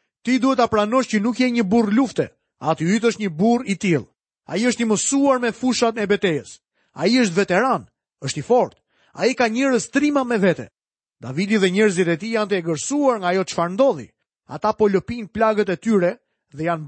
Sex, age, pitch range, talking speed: male, 30-49, 180-245 Hz, 190 wpm